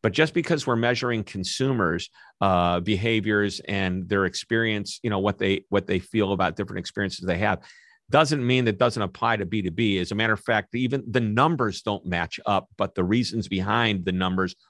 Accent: American